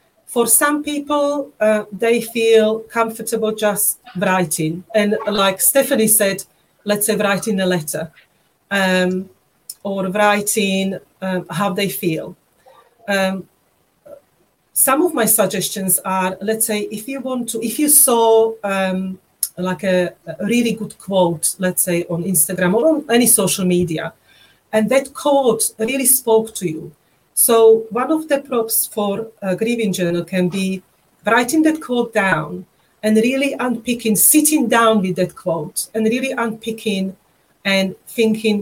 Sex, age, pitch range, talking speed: female, 40-59, 185-235 Hz, 140 wpm